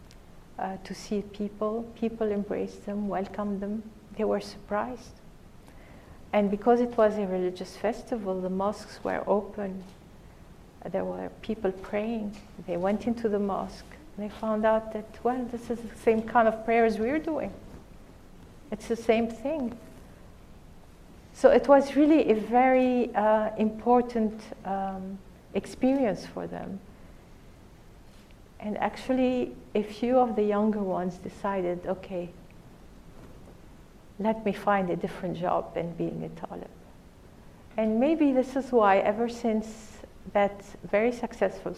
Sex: female